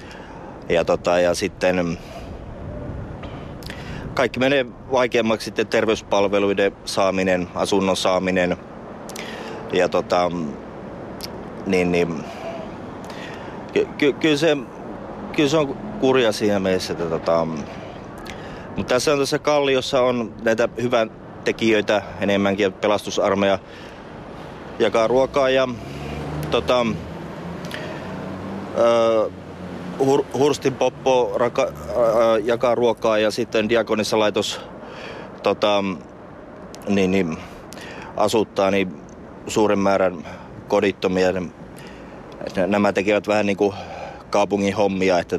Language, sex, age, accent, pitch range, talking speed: Finnish, male, 30-49, native, 95-115 Hz, 90 wpm